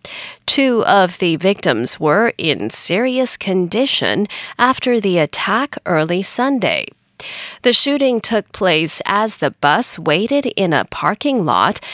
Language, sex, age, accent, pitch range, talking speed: English, female, 40-59, American, 180-255 Hz, 125 wpm